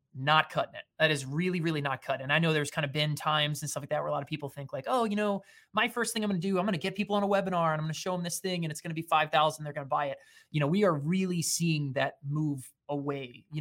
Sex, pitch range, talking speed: male, 140-185 Hz, 330 wpm